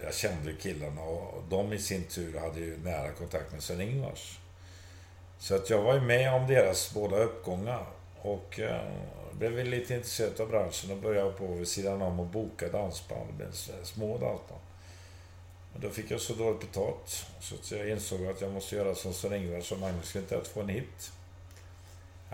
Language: Swedish